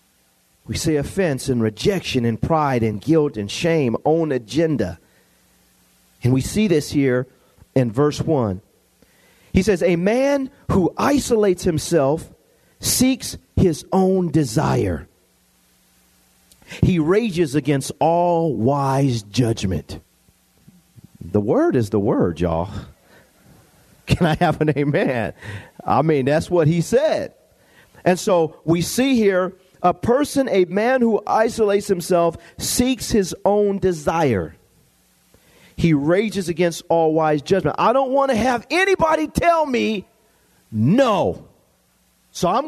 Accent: American